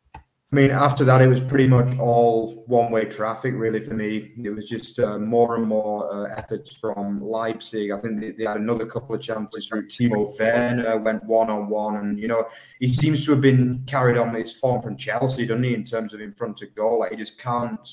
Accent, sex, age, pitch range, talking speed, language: British, male, 30-49, 110-130 Hz, 220 wpm, English